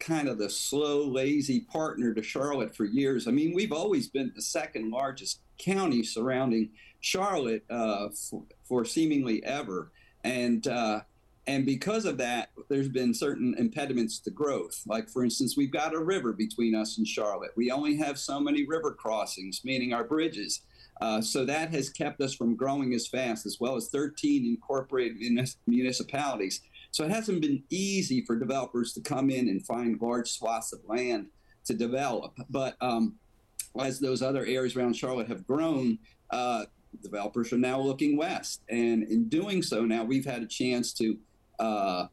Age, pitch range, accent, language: 50-69, 115-155 Hz, American, English